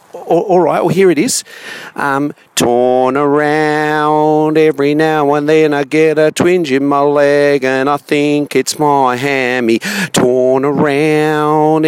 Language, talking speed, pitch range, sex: English, 145 wpm, 140-175 Hz, male